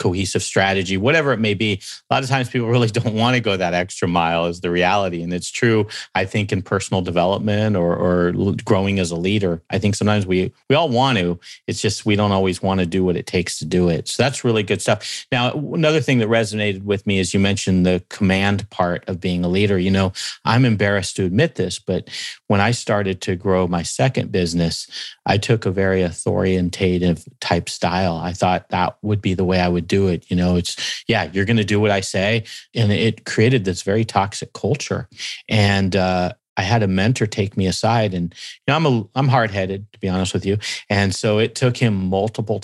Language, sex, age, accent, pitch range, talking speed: English, male, 40-59, American, 95-115 Hz, 225 wpm